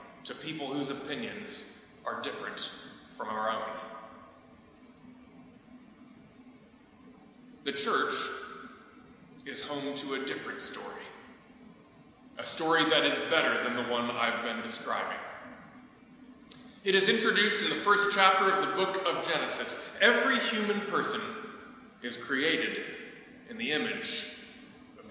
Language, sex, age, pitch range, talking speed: English, male, 20-39, 180-250 Hz, 115 wpm